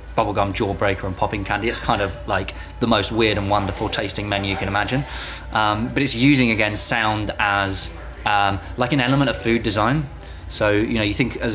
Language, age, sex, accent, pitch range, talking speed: English, 20-39, male, British, 95-115 Hz, 205 wpm